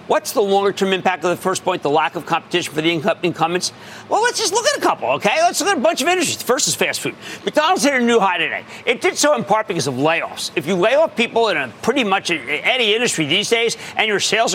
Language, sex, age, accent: English, male, 50-69, American